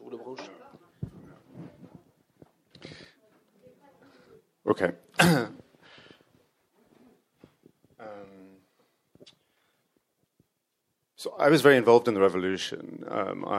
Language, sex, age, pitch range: French, male, 30-49, 90-105 Hz